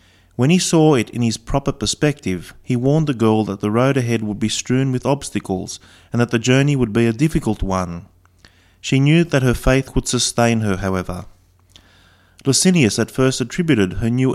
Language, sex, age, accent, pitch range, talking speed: English, male, 30-49, Australian, 95-140 Hz, 190 wpm